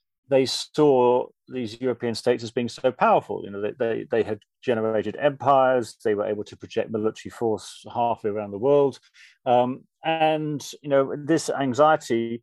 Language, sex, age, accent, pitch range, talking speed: English, male, 40-59, British, 110-140 Hz, 165 wpm